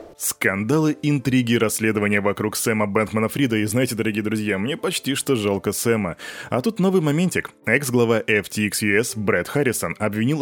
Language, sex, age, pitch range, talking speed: Russian, male, 20-39, 105-135 Hz, 145 wpm